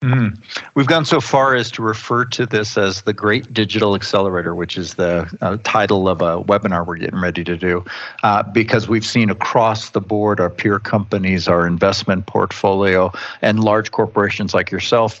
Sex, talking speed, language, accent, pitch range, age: male, 180 wpm, English, American, 95-115 Hz, 50-69